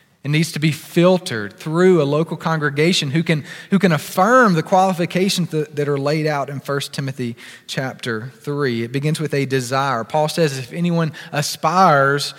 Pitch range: 140-195 Hz